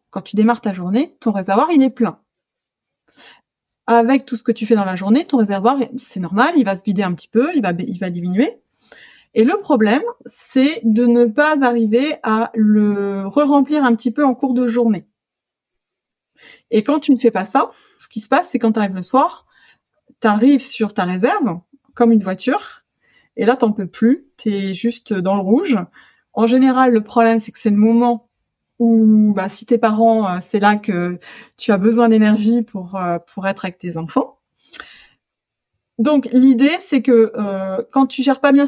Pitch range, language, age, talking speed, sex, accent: 210-260 Hz, French, 30-49, 195 wpm, female, French